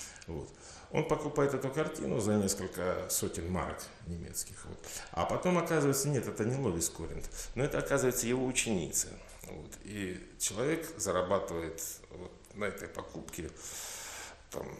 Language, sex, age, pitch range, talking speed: Russian, male, 50-69, 85-115 Hz, 135 wpm